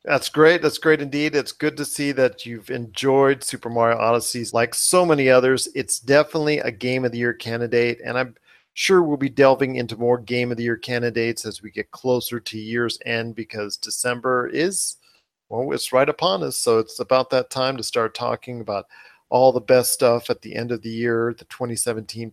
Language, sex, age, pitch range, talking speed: English, male, 40-59, 115-135 Hz, 205 wpm